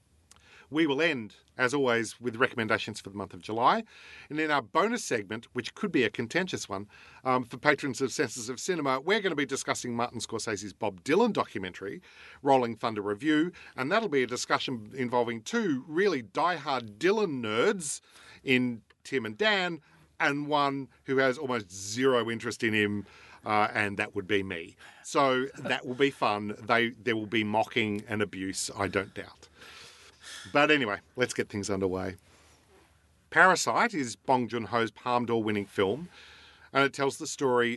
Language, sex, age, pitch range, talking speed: English, male, 50-69, 100-135 Hz, 170 wpm